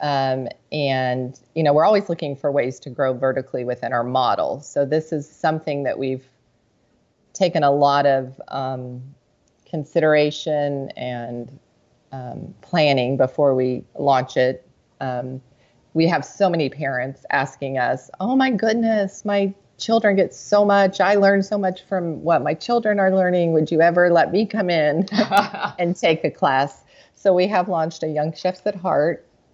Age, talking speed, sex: 30-49, 165 wpm, female